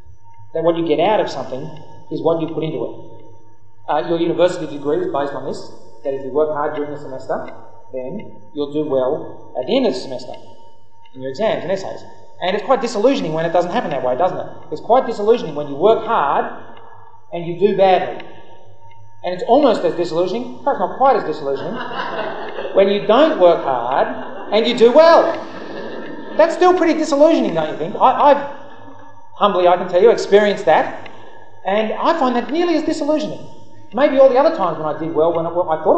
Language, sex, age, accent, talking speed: English, male, 30-49, Australian, 205 wpm